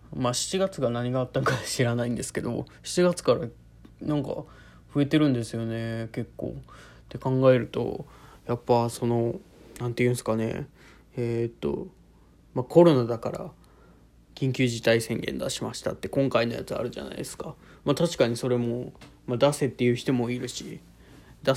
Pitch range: 115-140 Hz